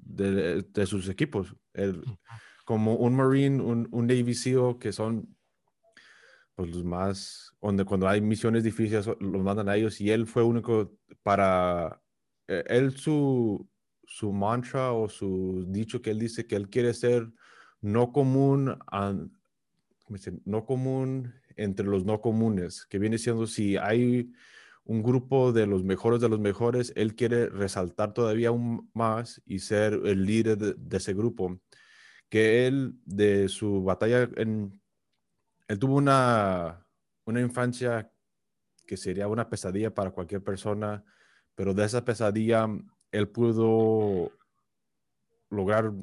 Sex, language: male, Spanish